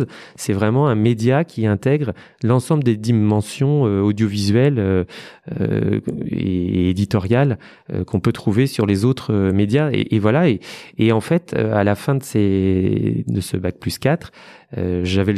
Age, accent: 30-49, French